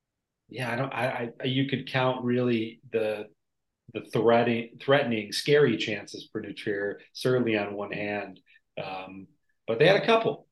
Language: English